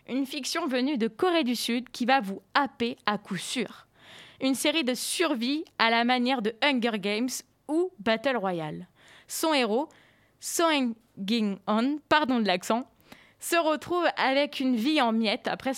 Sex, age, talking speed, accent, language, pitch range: female, 20-39, 165 wpm, French, French, 220-290 Hz